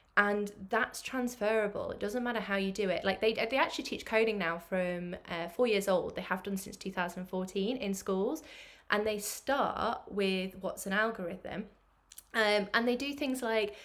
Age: 20-39